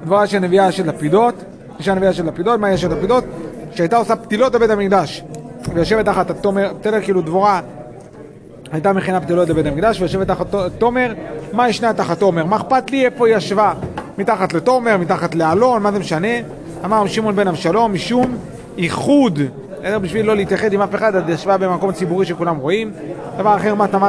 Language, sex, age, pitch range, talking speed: Hebrew, male, 30-49, 170-210 Hz, 115 wpm